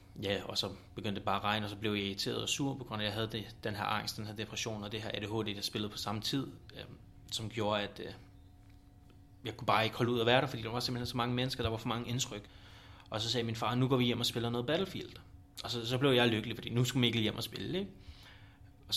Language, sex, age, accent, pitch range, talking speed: Danish, male, 30-49, native, 100-120 Hz, 290 wpm